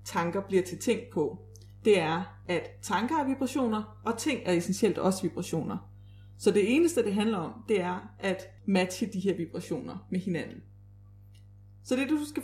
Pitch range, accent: 155-225 Hz, native